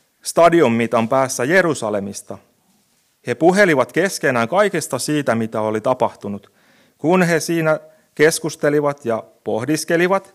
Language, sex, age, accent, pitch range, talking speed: Finnish, male, 30-49, native, 120-170 Hz, 110 wpm